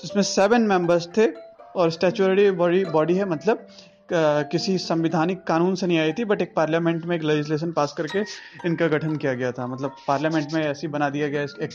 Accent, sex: native, male